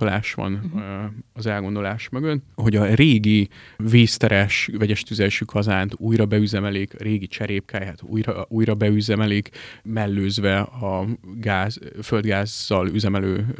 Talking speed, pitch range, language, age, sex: 100 wpm, 100-115 Hz, Hungarian, 30-49, male